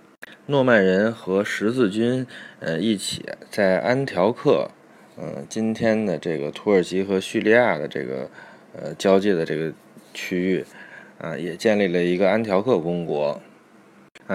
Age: 20-39